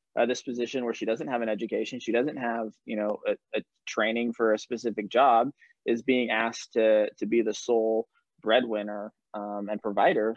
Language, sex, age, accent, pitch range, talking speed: English, male, 20-39, American, 110-125 Hz, 190 wpm